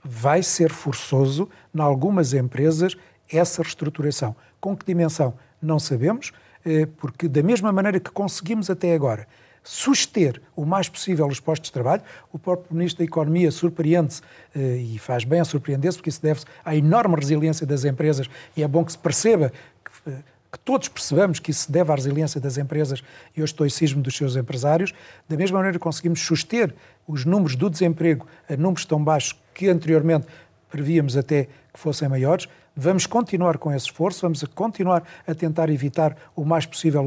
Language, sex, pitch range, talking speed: Portuguese, male, 145-175 Hz, 170 wpm